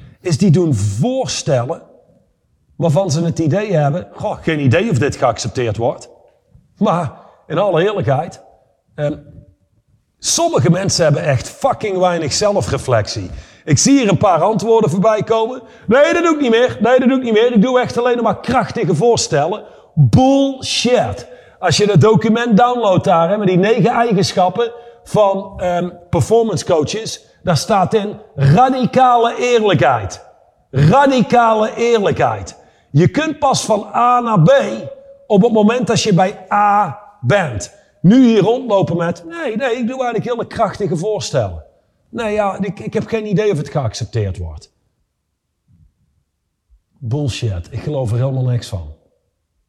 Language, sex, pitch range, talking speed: Dutch, male, 145-230 Hz, 145 wpm